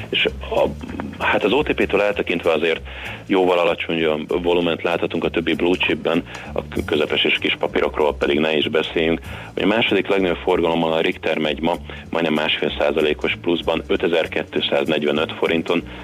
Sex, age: male, 30-49